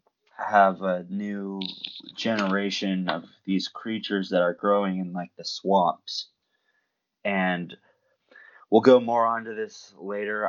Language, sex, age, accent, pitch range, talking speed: English, male, 20-39, American, 90-100 Hz, 125 wpm